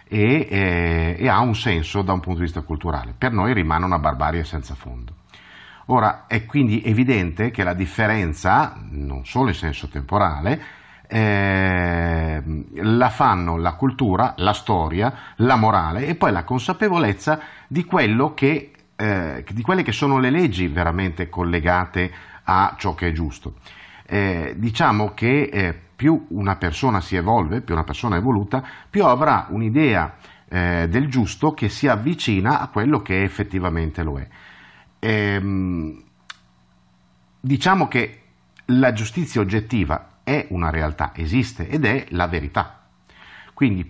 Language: Italian